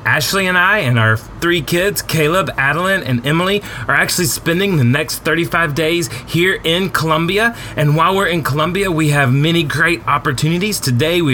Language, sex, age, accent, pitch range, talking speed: English, male, 30-49, American, 125-170 Hz, 175 wpm